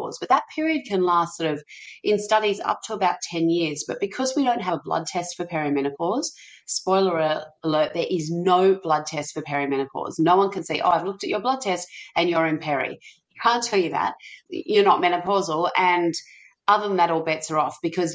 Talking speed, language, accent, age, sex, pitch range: 210 wpm, English, Australian, 30-49, female, 165-210 Hz